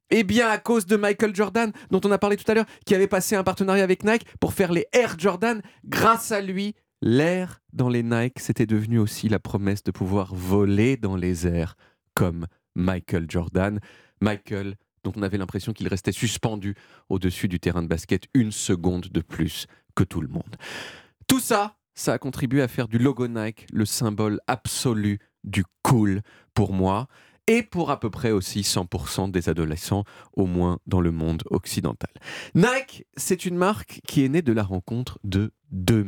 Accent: French